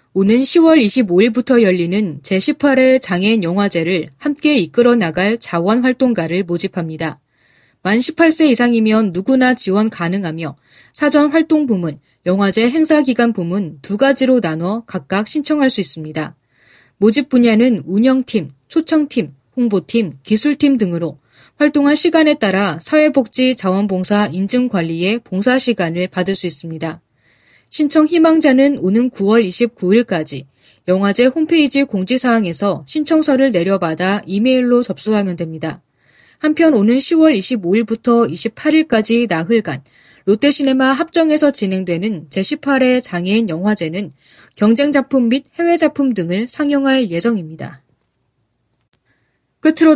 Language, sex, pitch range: Korean, female, 175-265 Hz